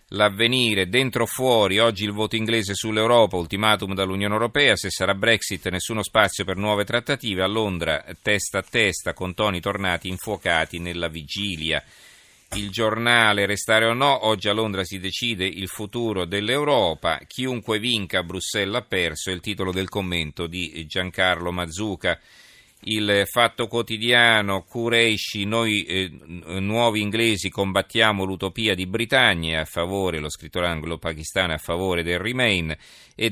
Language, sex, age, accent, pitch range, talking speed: Italian, male, 40-59, native, 90-110 Hz, 140 wpm